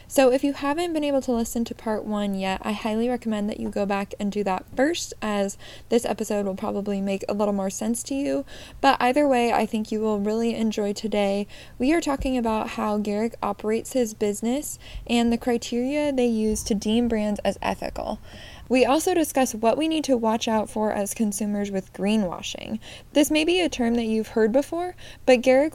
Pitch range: 210-265 Hz